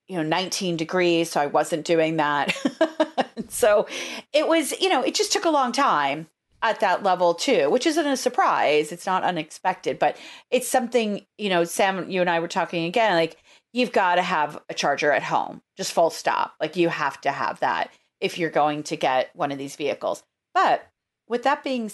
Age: 40-59